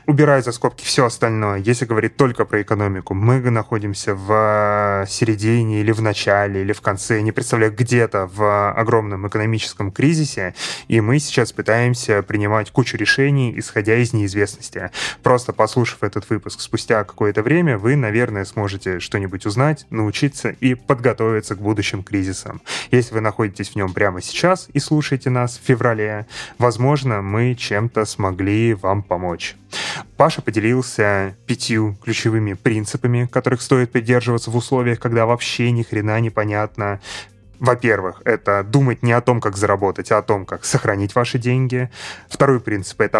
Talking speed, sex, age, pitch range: 150 wpm, male, 20-39, 105-125 Hz